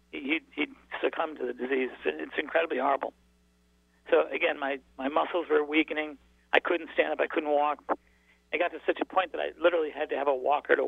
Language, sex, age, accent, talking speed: English, male, 40-59, American, 210 wpm